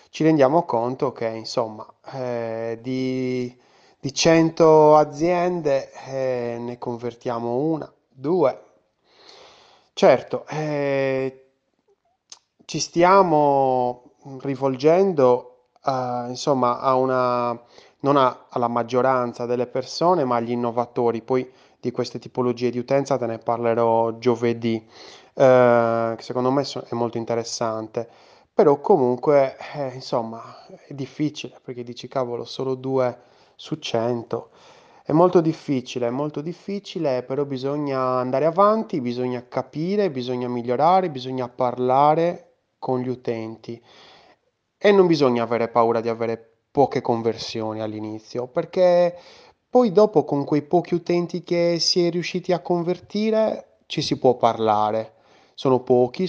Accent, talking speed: native, 115 wpm